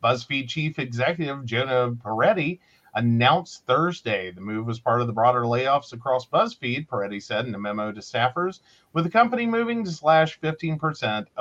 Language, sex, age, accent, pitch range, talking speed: English, male, 40-59, American, 115-165 Hz, 165 wpm